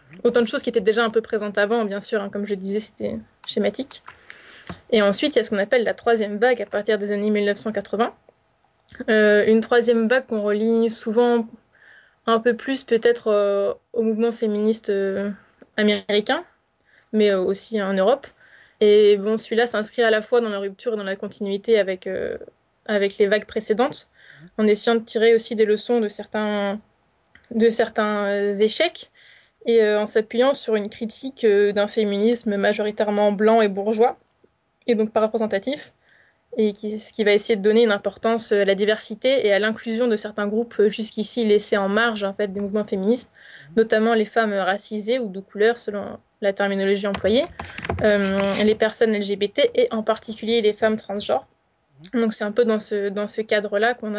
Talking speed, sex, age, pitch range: 185 wpm, female, 20-39, 205-230 Hz